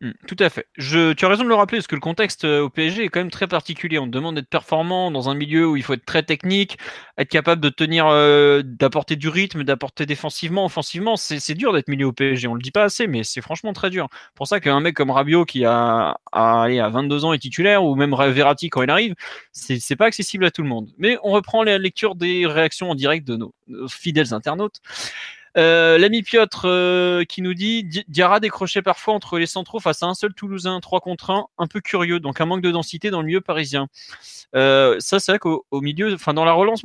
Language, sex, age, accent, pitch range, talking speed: French, male, 20-39, French, 145-190 Hz, 245 wpm